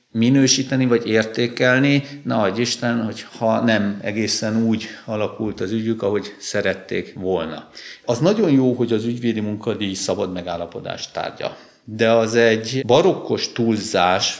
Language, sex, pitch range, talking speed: Hungarian, male, 90-115 Hz, 125 wpm